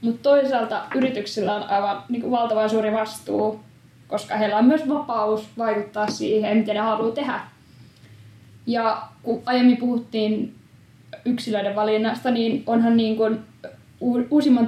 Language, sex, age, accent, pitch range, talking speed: Finnish, female, 10-29, native, 215-240 Hz, 125 wpm